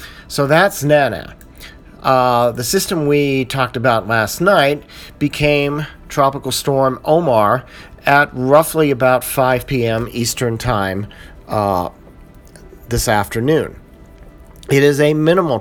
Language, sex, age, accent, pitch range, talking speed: English, male, 40-59, American, 115-140 Hz, 110 wpm